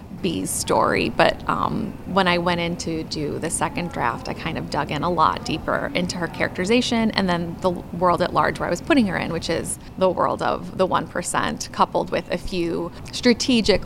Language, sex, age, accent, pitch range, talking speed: English, female, 20-39, American, 175-200 Hz, 210 wpm